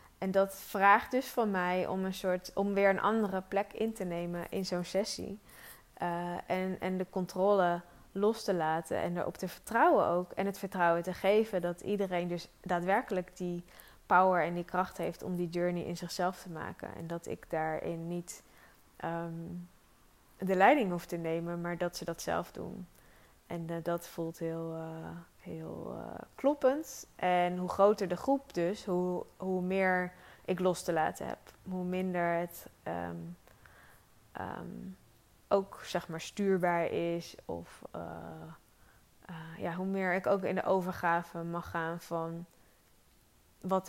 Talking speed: 165 wpm